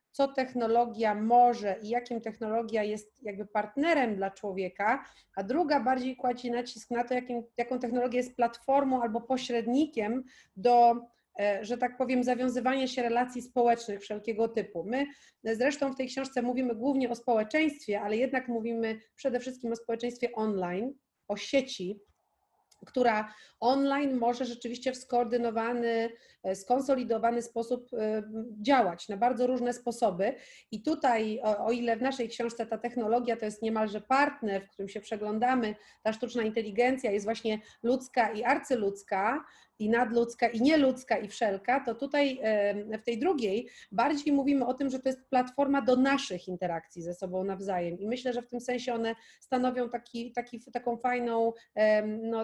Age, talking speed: 40-59, 150 wpm